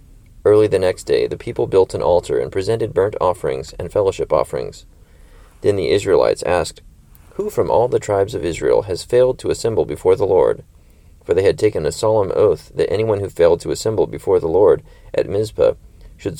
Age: 30-49